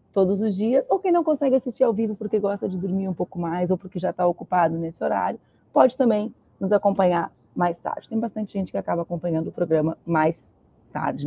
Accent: Brazilian